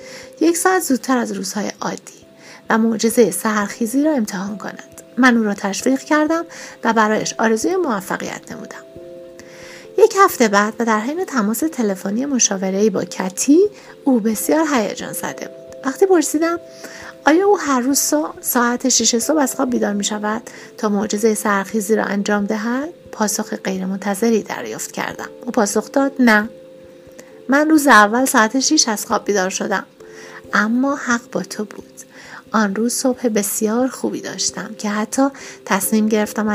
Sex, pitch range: female, 205-260 Hz